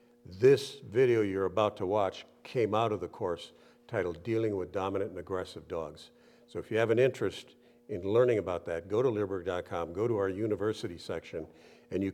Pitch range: 105-120 Hz